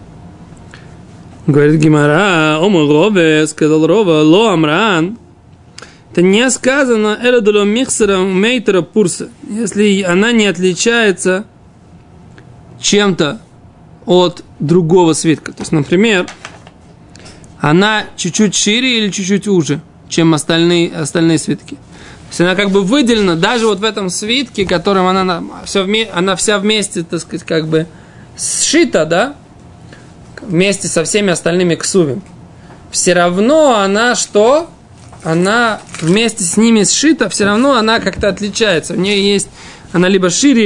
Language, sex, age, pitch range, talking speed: Russian, male, 20-39, 170-220 Hz, 115 wpm